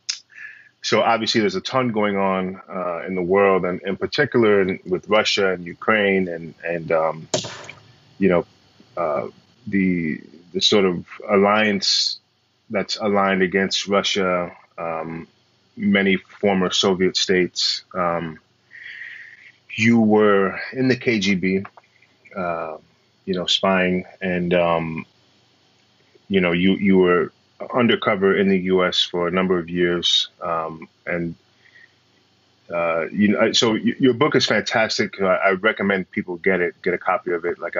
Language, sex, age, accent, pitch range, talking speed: English, male, 30-49, American, 90-105 Hz, 140 wpm